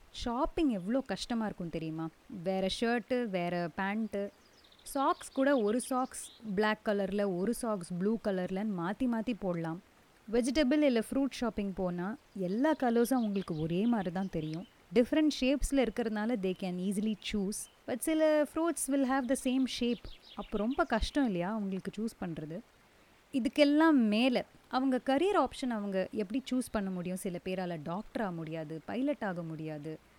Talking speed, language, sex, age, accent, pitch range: 145 wpm, Tamil, female, 30-49, native, 190-260 Hz